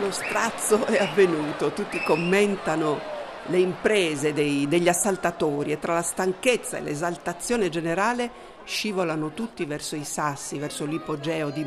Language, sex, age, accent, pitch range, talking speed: Italian, female, 50-69, native, 155-210 Hz, 130 wpm